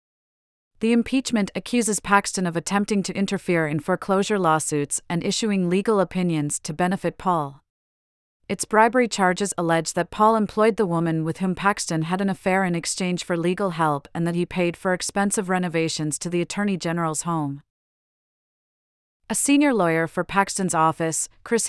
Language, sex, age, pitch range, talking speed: English, female, 40-59, 165-200 Hz, 160 wpm